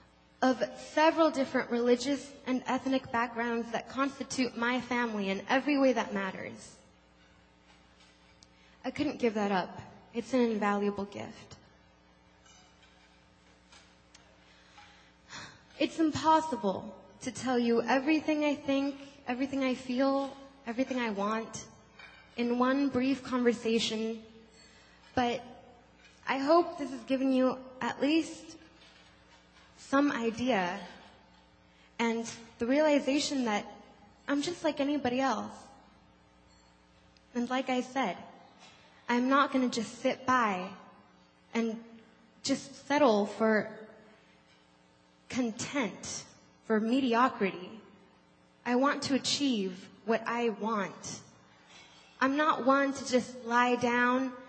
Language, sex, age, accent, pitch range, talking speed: English, female, 10-29, American, 200-265 Hz, 105 wpm